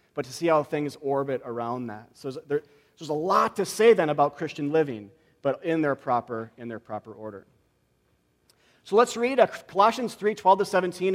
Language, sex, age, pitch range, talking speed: English, male, 40-59, 125-170 Hz, 185 wpm